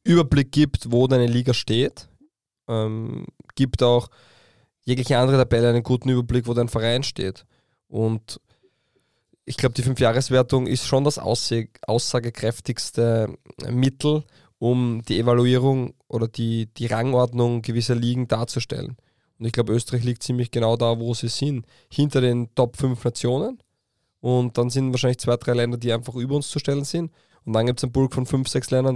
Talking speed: 165 wpm